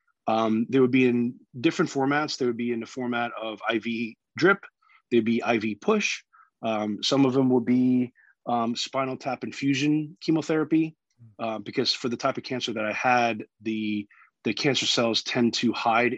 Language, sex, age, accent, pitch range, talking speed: English, male, 30-49, American, 115-135 Hz, 180 wpm